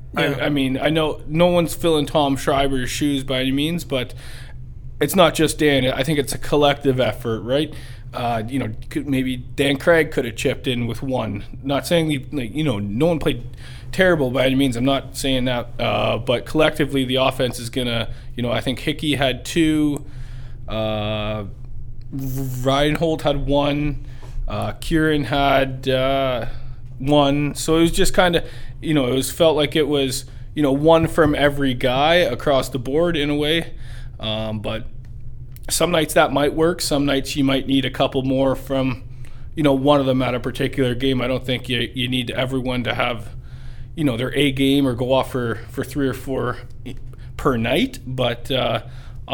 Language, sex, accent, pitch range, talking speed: English, male, American, 125-145 Hz, 185 wpm